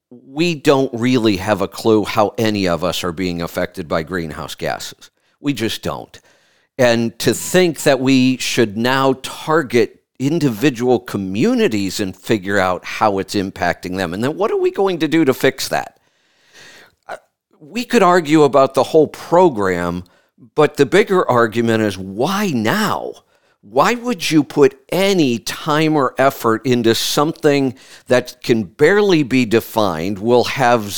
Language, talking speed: English, 150 wpm